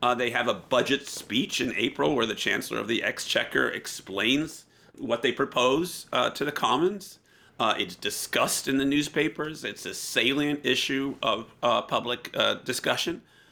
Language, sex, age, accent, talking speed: English, male, 40-59, American, 165 wpm